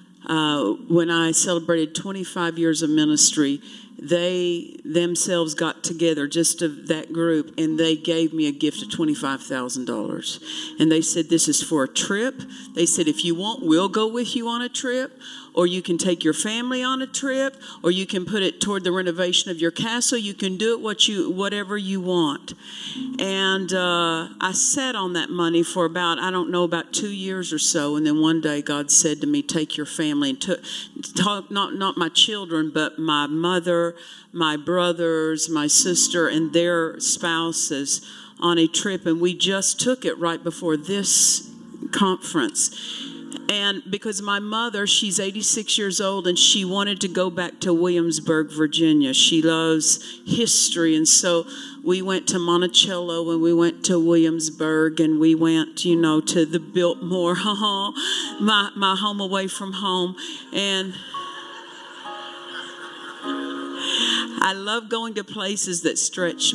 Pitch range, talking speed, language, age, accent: 165-205 Hz, 165 wpm, English, 50-69, American